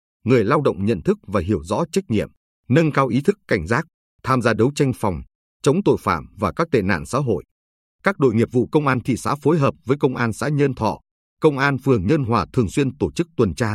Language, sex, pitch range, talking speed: Vietnamese, male, 100-140 Hz, 250 wpm